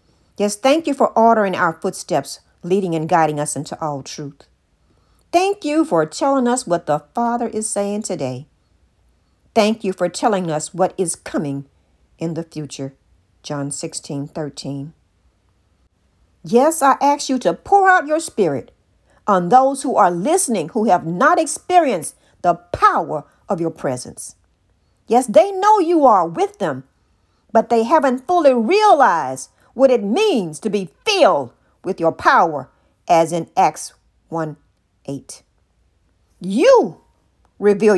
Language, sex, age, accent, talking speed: English, female, 50-69, American, 140 wpm